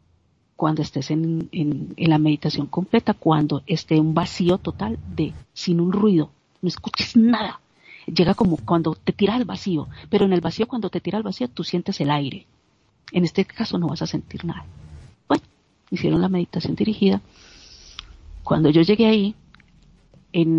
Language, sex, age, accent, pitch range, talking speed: Spanish, female, 50-69, Colombian, 155-200 Hz, 170 wpm